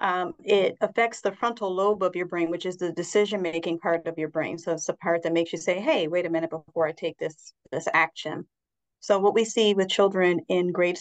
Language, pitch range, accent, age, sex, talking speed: English, 170-200 Hz, American, 30-49, female, 235 wpm